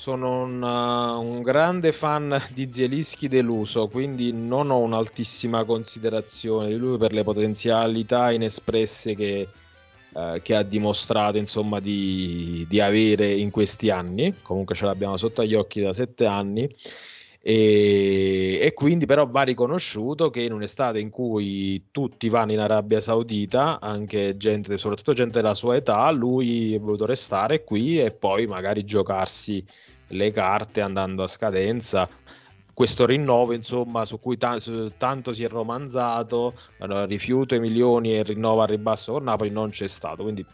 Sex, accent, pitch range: male, native, 105-120 Hz